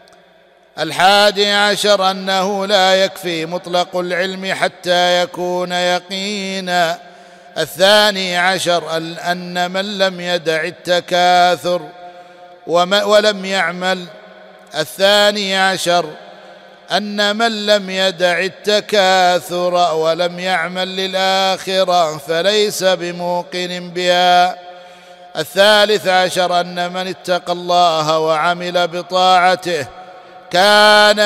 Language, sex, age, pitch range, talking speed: Arabic, male, 50-69, 175-190 Hz, 80 wpm